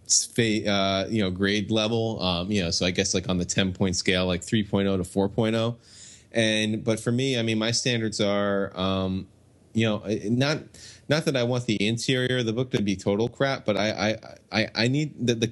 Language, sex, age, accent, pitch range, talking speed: English, male, 20-39, American, 95-110 Hz, 210 wpm